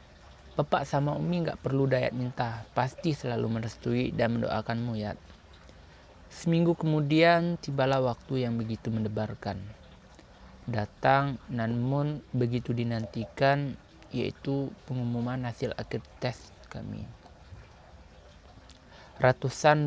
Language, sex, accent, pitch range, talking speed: Indonesian, male, native, 110-135 Hz, 95 wpm